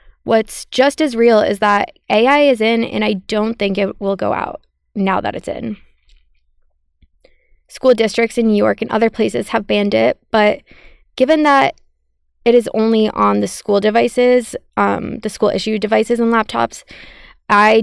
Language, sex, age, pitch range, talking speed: English, female, 20-39, 190-230 Hz, 170 wpm